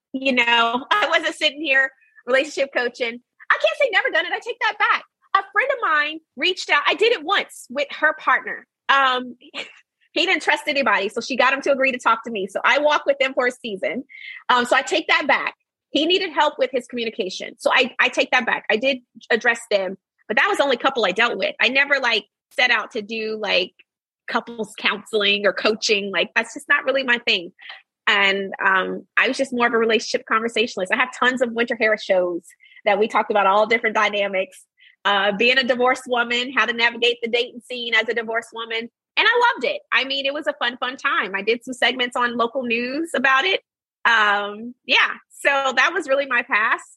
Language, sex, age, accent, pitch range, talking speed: English, female, 30-49, American, 220-280 Hz, 220 wpm